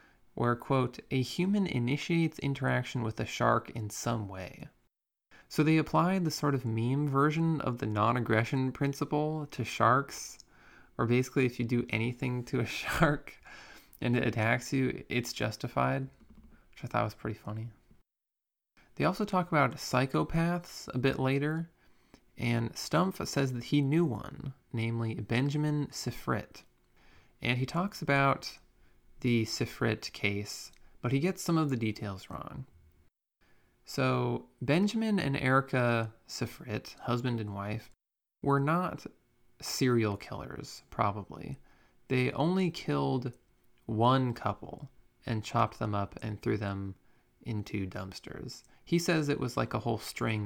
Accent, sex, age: American, male, 20-39